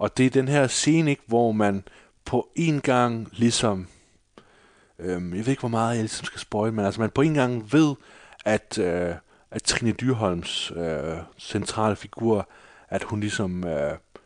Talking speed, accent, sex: 170 wpm, native, male